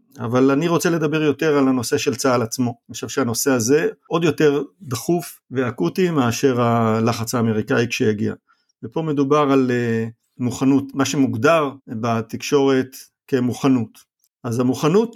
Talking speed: 125 wpm